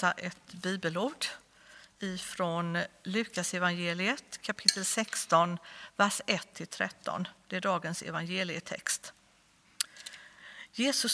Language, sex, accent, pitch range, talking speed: Swedish, female, native, 175-230 Hz, 80 wpm